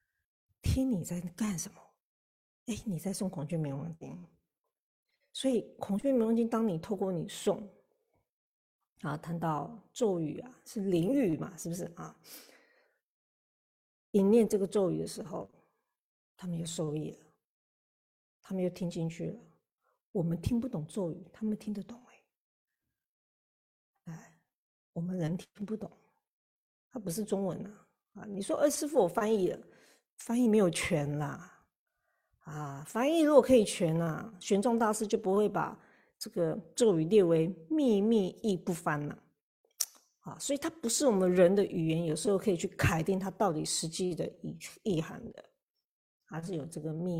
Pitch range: 170-230 Hz